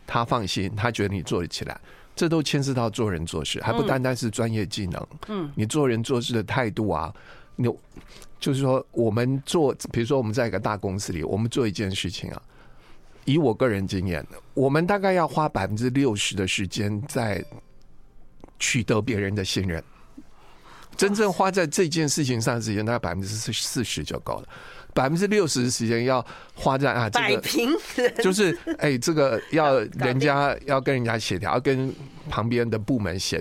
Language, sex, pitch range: Chinese, male, 100-135 Hz